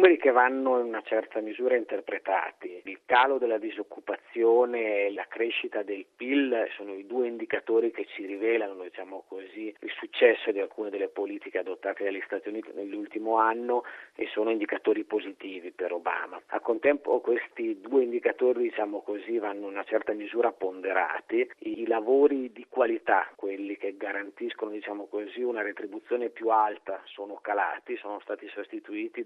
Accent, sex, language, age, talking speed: native, male, Italian, 40-59, 150 wpm